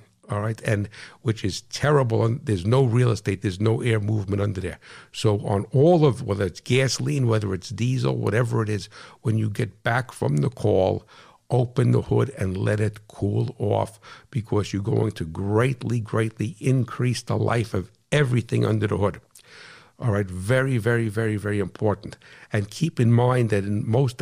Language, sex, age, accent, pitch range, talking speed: English, male, 60-79, American, 105-120 Hz, 180 wpm